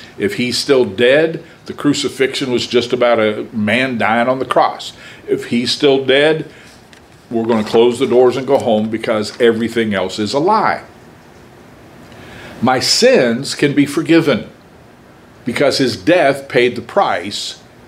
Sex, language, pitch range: male, English, 120-165 Hz